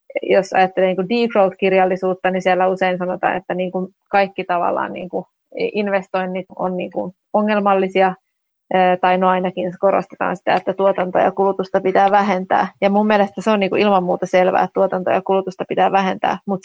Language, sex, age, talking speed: Finnish, female, 30-49, 160 wpm